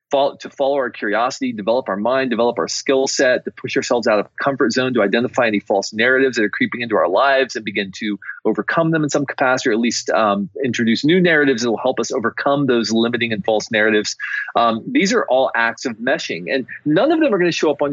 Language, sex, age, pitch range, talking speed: English, male, 30-49, 110-145 Hz, 240 wpm